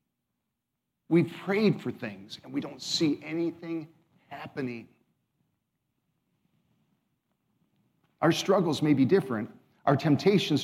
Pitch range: 135-175 Hz